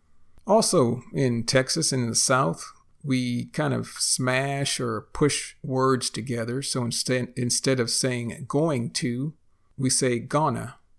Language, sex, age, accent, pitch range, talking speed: English, male, 50-69, American, 110-135 Hz, 130 wpm